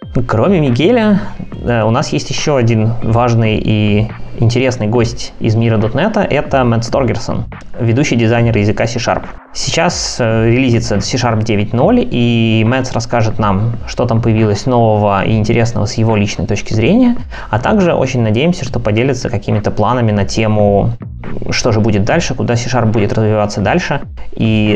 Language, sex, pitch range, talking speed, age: Russian, male, 110-130 Hz, 145 wpm, 20-39